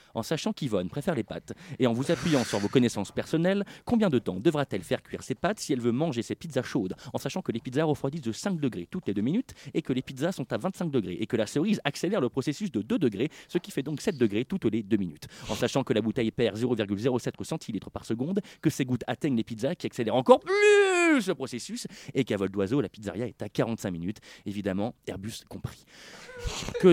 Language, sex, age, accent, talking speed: French, male, 30-49, French, 235 wpm